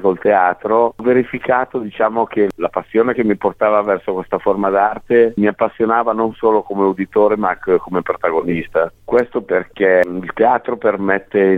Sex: male